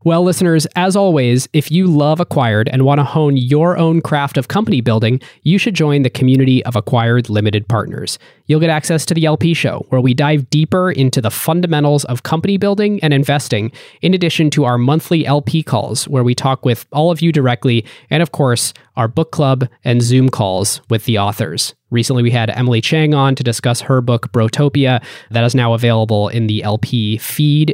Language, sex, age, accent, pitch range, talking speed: English, male, 20-39, American, 115-150 Hz, 200 wpm